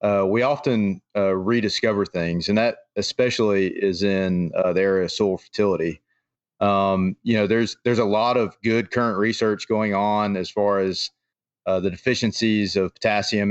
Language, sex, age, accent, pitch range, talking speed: English, male, 30-49, American, 95-110 Hz, 170 wpm